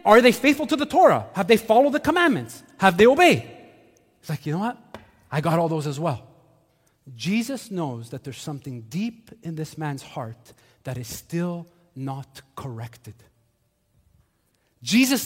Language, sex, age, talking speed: English, male, 30-49, 160 wpm